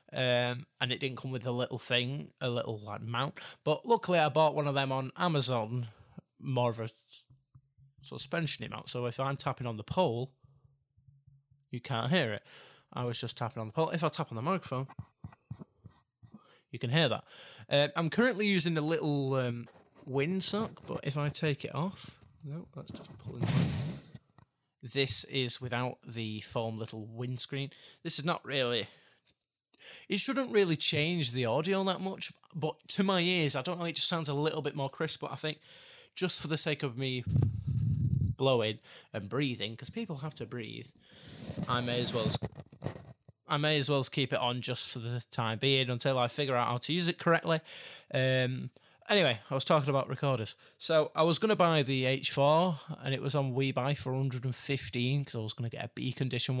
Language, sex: English, male